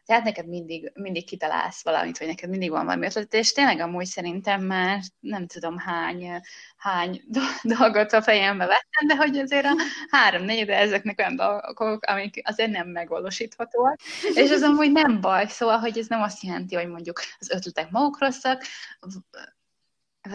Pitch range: 180-240 Hz